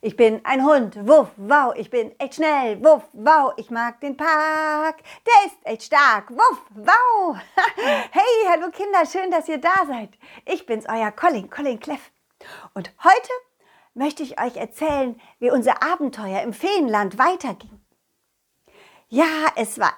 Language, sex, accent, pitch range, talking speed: German, female, German, 235-350 Hz, 155 wpm